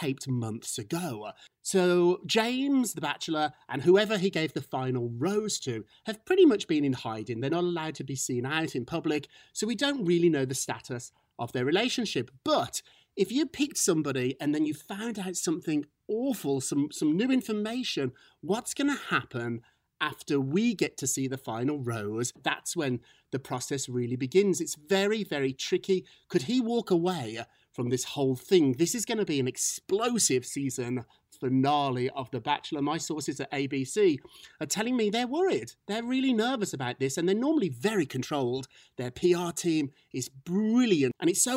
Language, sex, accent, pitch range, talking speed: English, male, British, 130-210 Hz, 180 wpm